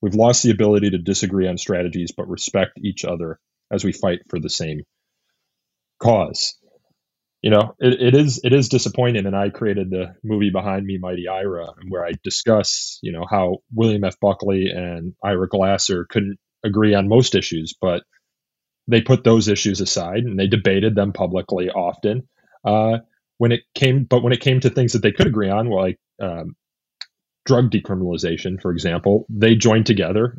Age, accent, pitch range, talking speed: 30-49, American, 95-120 Hz, 180 wpm